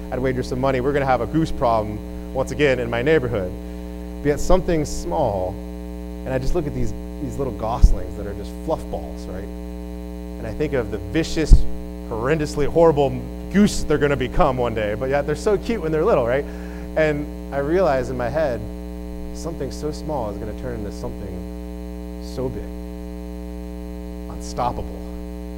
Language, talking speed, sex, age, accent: English, 175 wpm, male, 30-49, American